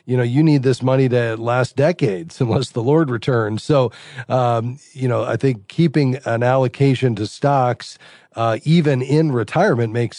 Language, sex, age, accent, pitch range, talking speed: English, male, 40-59, American, 110-130 Hz, 170 wpm